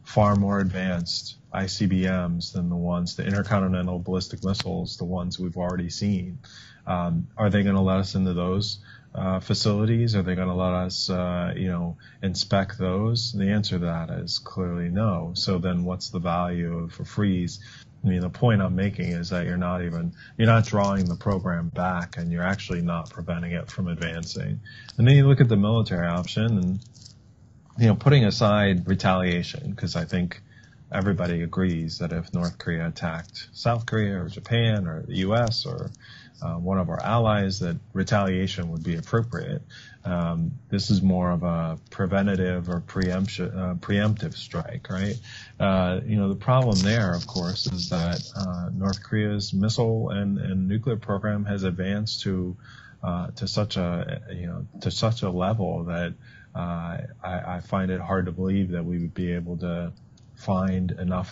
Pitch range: 90-110 Hz